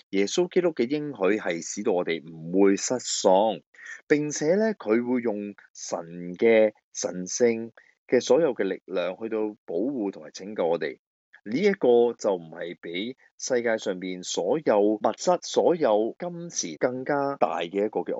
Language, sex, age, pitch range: Chinese, male, 30-49, 95-135 Hz